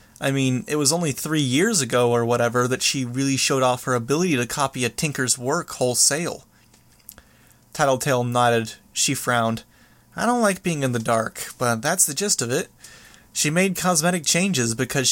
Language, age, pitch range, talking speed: English, 20-39, 120-175 Hz, 180 wpm